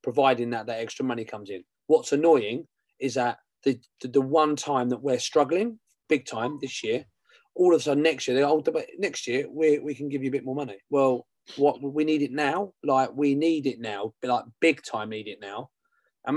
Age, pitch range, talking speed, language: 30-49, 120-145 Hz, 225 wpm, English